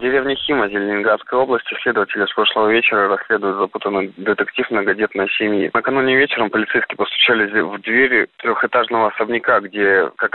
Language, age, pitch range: Russian, 20-39, 100-115 Hz